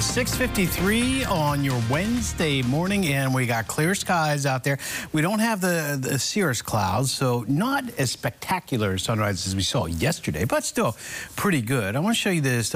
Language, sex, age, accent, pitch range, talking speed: English, male, 50-69, American, 110-150 Hz, 180 wpm